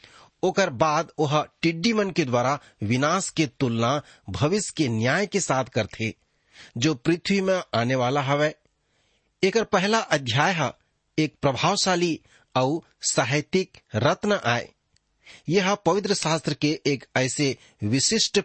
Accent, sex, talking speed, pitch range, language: Indian, male, 120 wpm, 120-175 Hz, English